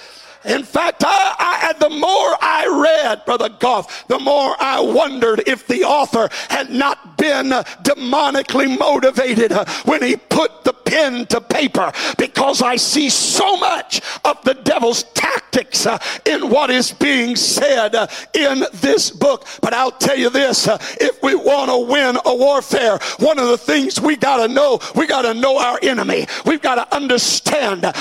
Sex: male